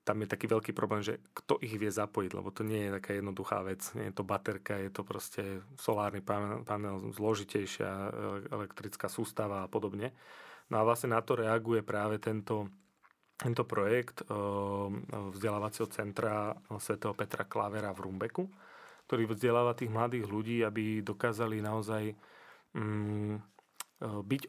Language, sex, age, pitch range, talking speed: Slovak, male, 30-49, 105-120 Hz, 140 wpm